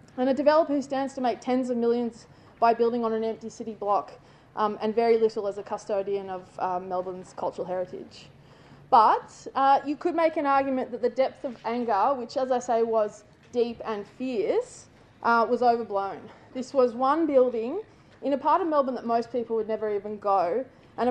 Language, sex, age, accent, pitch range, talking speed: English, female, 20-39, Australian, 215-265 Hz, 195 wpm